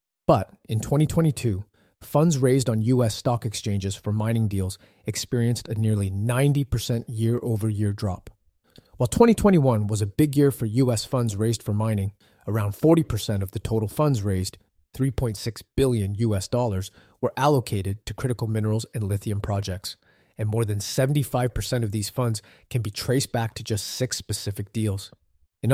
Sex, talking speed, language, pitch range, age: male, 150 wpm, English, 105-130 Hz, 30-49